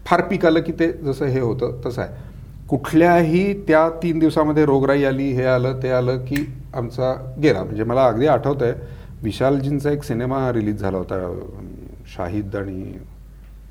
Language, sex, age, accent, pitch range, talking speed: Marathi, male, 40-59, native, 105-150 Hz, 155 wpm